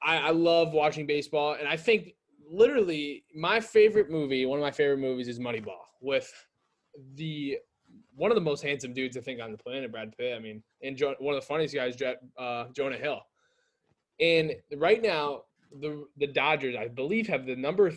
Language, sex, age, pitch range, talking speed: English, male, 20-39, 130-165 Hz, 185 wpm